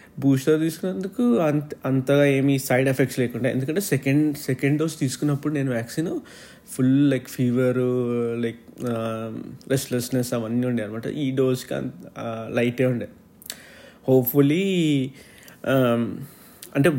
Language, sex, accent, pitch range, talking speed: Telugu, male, native, 125-150 Hz, 105 wpm